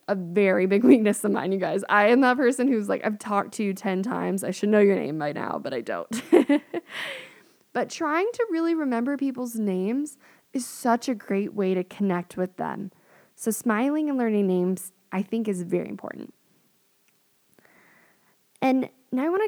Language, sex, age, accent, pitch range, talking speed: English, female, 10-29, American, 190-250 Hz, 185 wpm